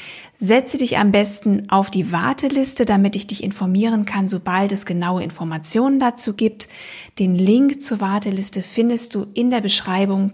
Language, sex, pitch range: German, female, 195-230 Hz